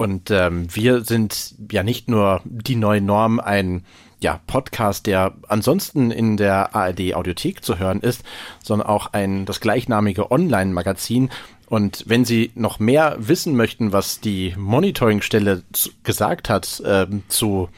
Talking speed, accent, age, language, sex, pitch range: 145 wpm, German, 40-59, German, male, 95-120 Hz